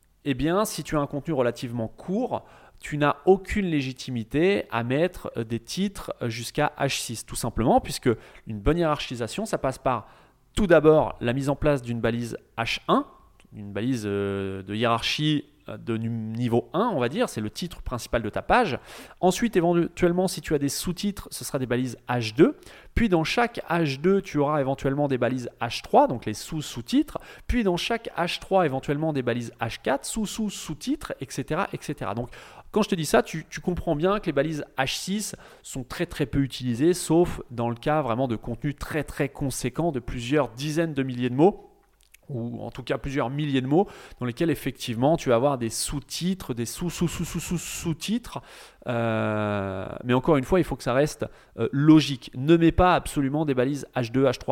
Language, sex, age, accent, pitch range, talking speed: French, male, 30-49, French, 120-170 Hz, 180 wpm